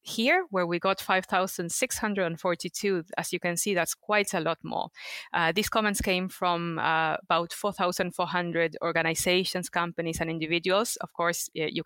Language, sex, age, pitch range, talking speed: English, female, 30-49, 165-190 Hz, 145 wpm